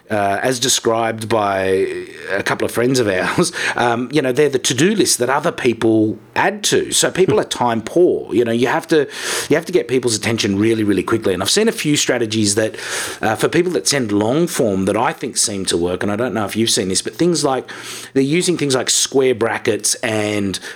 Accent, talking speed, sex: Australian, 225 wpm, male